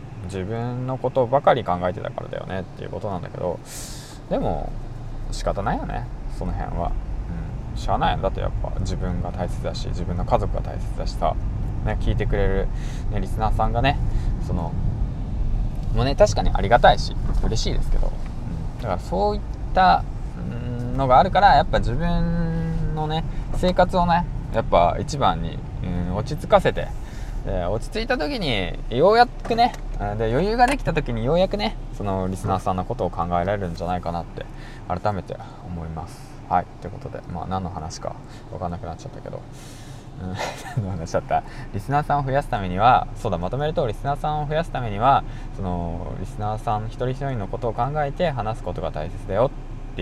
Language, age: Japanese, 20-39